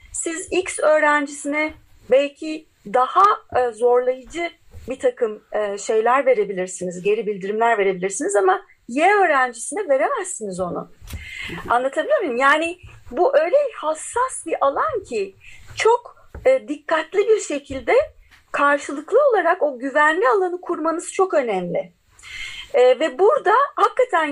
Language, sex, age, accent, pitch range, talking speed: Turkish, female, 40-59, native, 250-345 Hz, 105 wpm